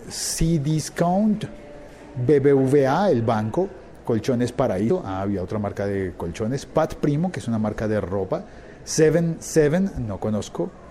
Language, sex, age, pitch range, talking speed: Spanish, male, 50-69, 105-140 Hz, 140 wpm